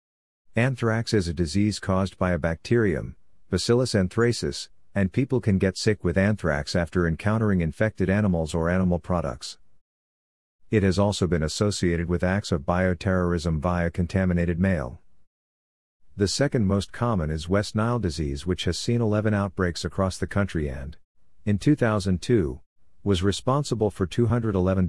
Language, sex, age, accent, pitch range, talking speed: English, male, 50-69, American, 85-100 Hz, 140 wpm